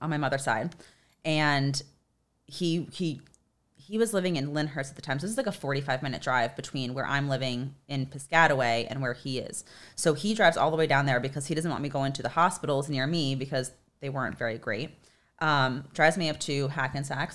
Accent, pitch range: American, 135-165 Hz